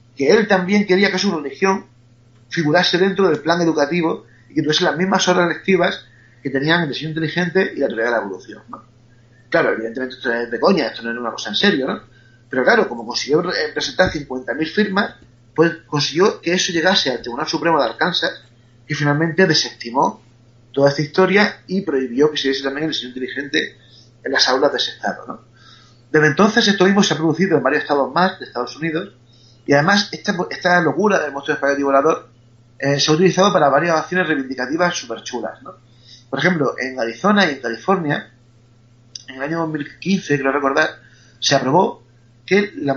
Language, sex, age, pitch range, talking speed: Spanish, male, 30-49, 120-165 Hz, 190 wpm